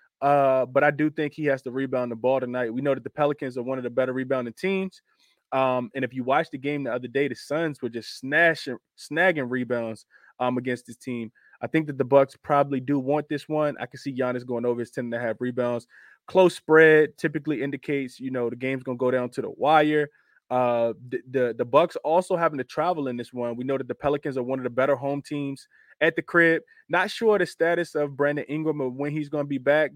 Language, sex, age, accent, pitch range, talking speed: English, male, 20-39, American, 130-160 Hz, 245 wpm